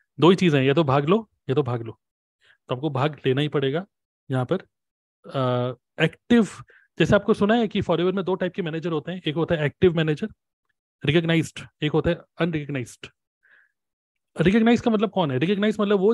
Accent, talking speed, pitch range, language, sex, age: native, 195 wpm, 145-190 Hz, Hindi, male, 30-49